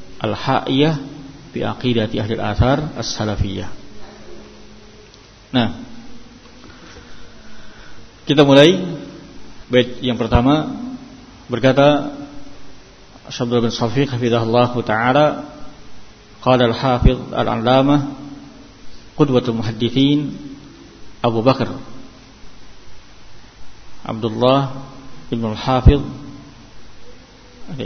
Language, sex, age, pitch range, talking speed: Indonesian, male, 50-69, 110-130 Hz, 60 wpm